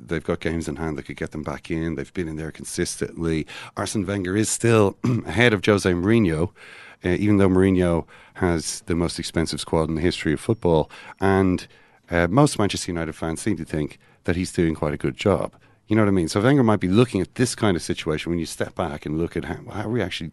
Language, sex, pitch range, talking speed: English, male, 80-105 Hz, 240 wpm